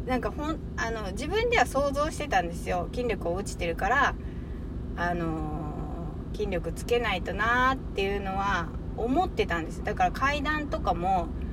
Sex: female